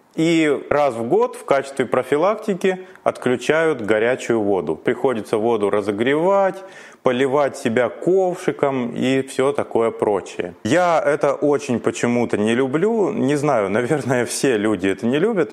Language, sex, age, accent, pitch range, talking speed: Russian, male, 30-49, native, 120-160 Hz, 130 wpm